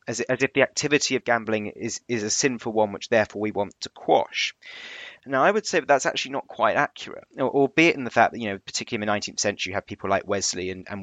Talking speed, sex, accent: 250 wpm, male, British